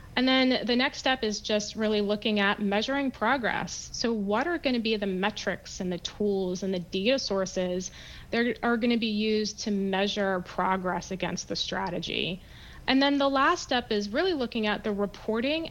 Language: English